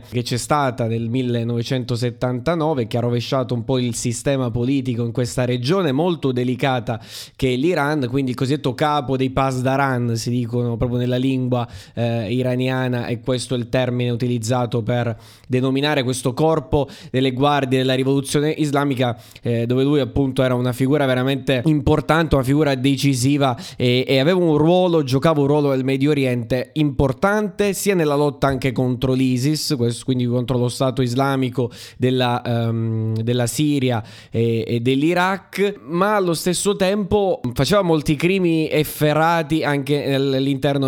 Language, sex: Italian, male